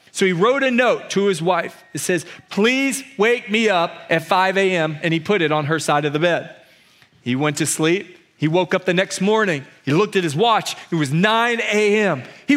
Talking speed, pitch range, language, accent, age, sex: 225 wpm, 160-220 Hz, English, American, 40-59, male